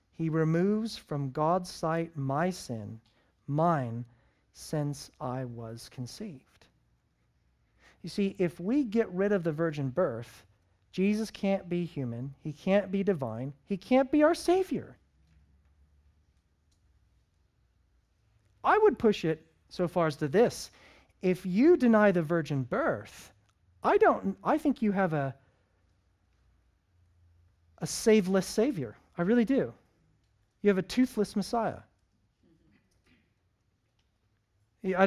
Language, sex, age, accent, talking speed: English, male, 40-59, American, 120 wpm